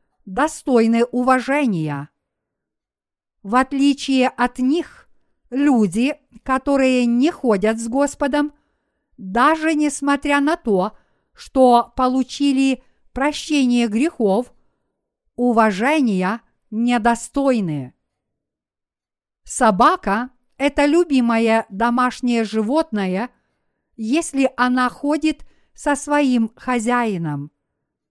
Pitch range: 225-280 Hz